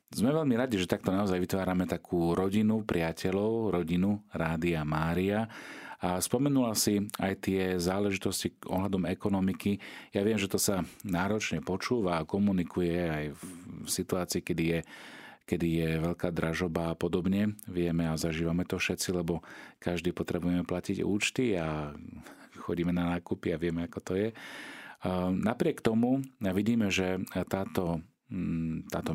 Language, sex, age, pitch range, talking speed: Slovak, male, 40-59, 85-100 Hz, 140 wpm